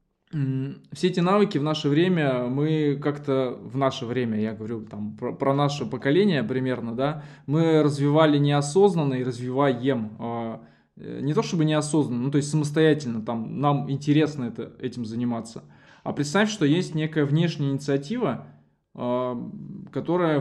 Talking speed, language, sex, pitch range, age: 130 wpm, Russian, male, 125-155 Hz, 20-39